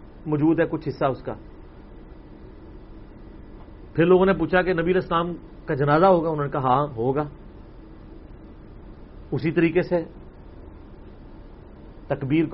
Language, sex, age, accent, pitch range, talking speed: English, male, 40-59, Indian, 115-170 Hz, 105 wpm